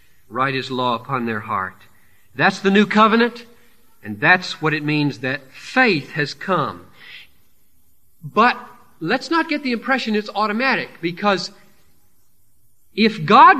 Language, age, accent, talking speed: English, 40-59, American, 130 wpm